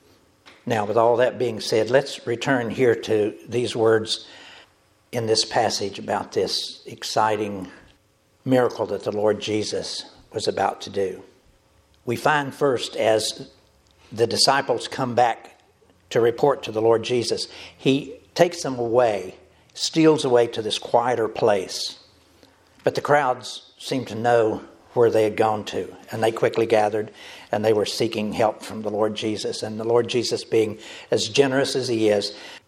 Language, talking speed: English, 155 wpm